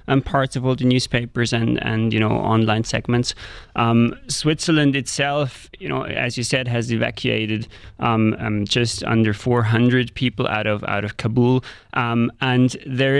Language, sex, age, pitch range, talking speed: English, male, 20-39, 105-120 Hz, 165 wpm